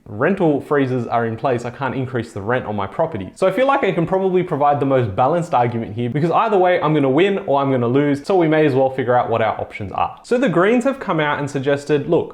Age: 30-49